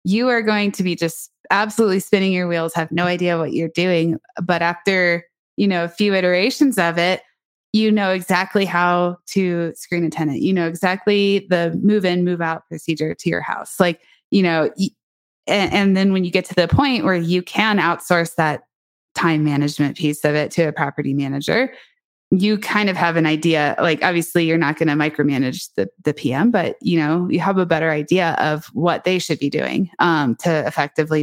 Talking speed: 200 wpm